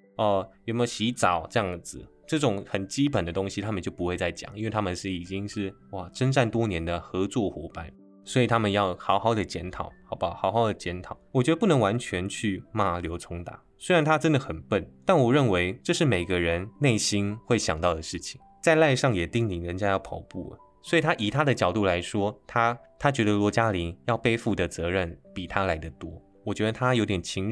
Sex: male